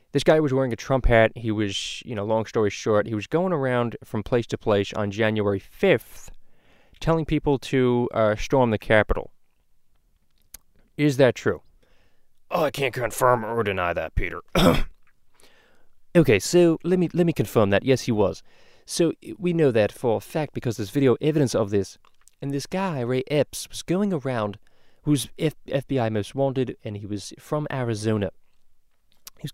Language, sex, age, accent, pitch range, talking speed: English, male, 20-39, American, 105-145 Hz, 175 wpm